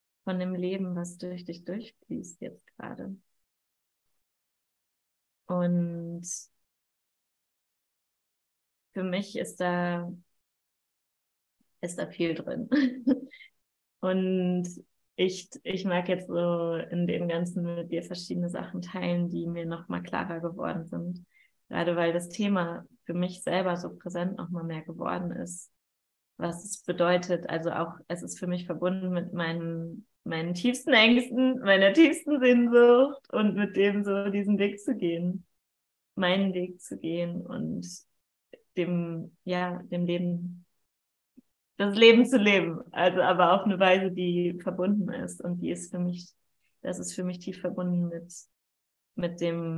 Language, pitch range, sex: German, 170-190 Hz, female